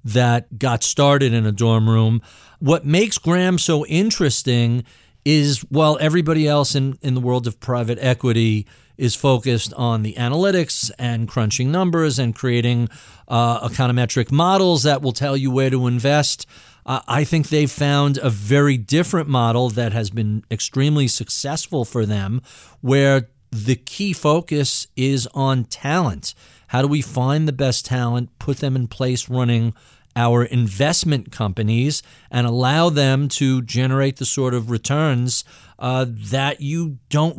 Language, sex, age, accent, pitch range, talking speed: English, male, 40-59, American, 120-150 Hz, 150 wpm